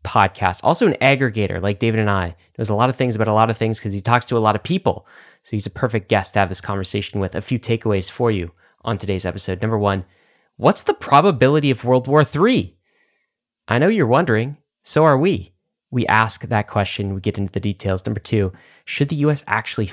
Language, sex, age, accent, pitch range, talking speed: English, male, 20-39, American, 100-130 Hz, 225 wpm